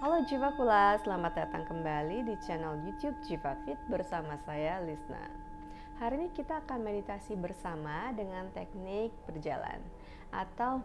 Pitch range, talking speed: 160-245 Hz, 135 wpm